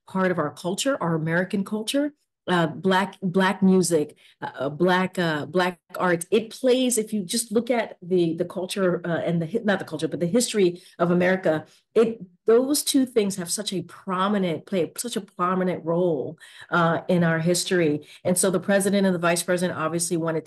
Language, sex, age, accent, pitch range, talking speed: English, female, 40-59, American, 165-205 Hz, 190 wpm